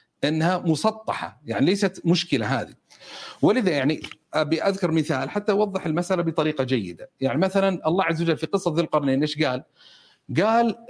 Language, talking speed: Arabic, 155 wpm